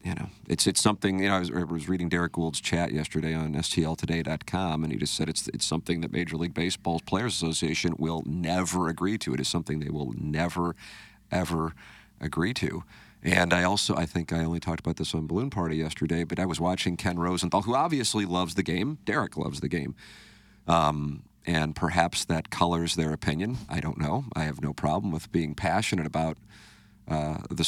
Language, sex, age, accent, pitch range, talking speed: English, male, 40-59, American, 80-95 Hz, 200 wpm